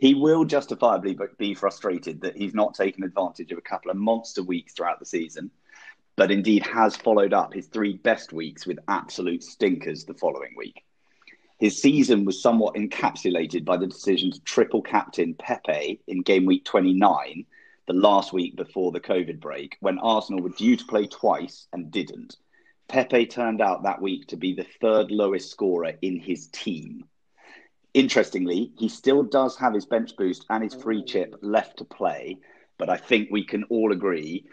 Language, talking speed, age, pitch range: English, 175 wpm, 30-49, 95-125 Hz